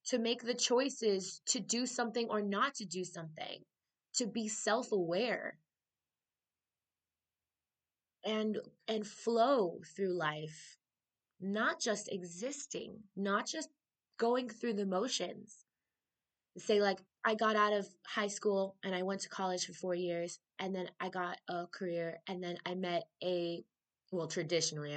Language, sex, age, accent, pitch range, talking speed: English, female, 20-39, American, 170-225 Hz, 140 wpm